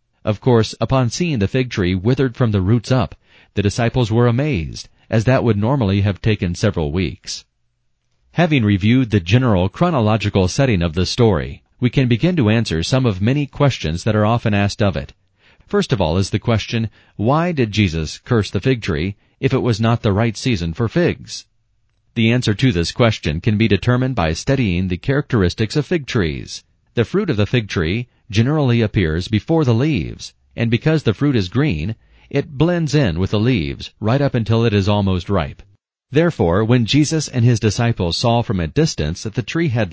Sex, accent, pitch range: male, American, 100-130 Hz